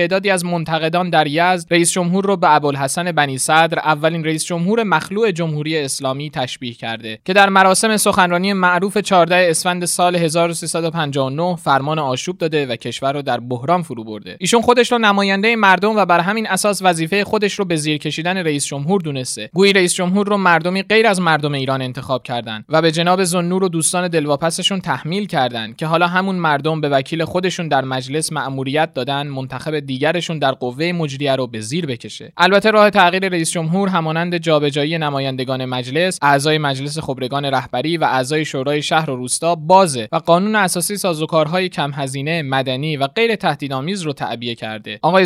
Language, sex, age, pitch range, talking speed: Persian, male, 20-39, 140-185 Hz, 175 wpm